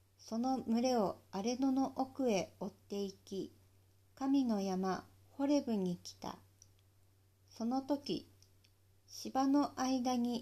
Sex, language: female, Japanese